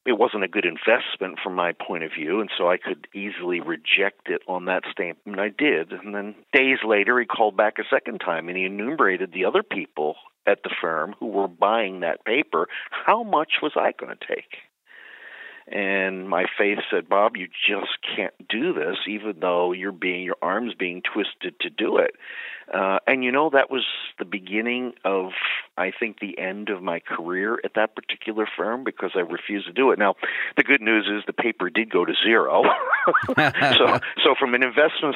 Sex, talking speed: male, 200 wpm